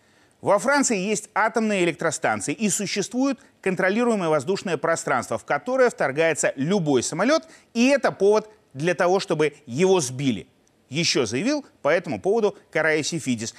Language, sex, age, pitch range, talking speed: Russian, male, 30-49, 140-215 Hz, 130 wpm